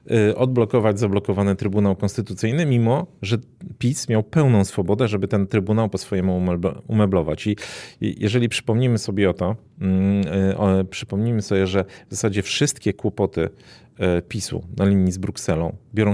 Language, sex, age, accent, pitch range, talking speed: Polish, male, 40-59, native, 100-115 Hz, 130 wpm